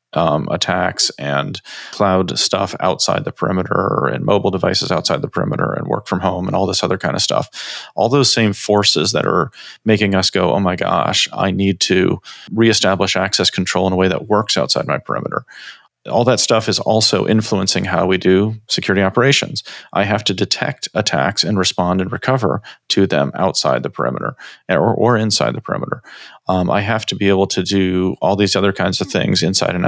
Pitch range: 95-115 Hz